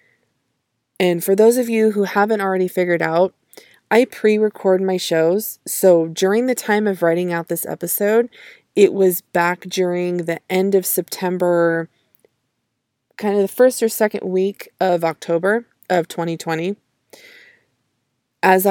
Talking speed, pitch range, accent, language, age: 140 wpm, 175-200 Hz, American, English, 20-39